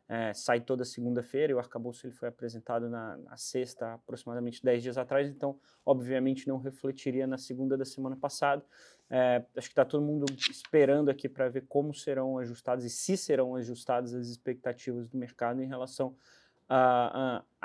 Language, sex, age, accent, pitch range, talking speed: Portuguese, male, 20-39, Brazilian, 120-135 Hz, 170 wpm